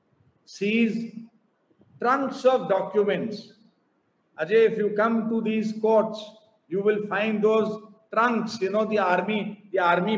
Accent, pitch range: Indian, 195-220 Hz